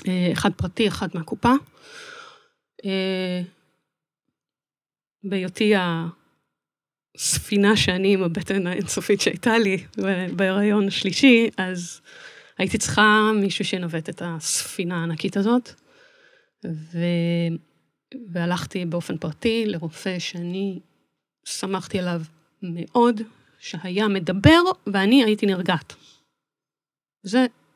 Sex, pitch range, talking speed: female, 185-260 Hz, 80 wpm